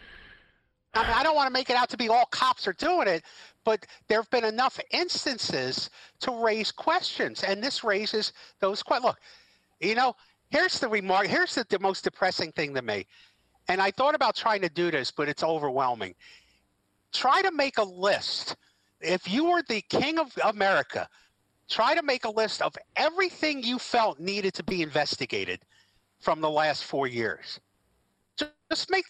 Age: 50-69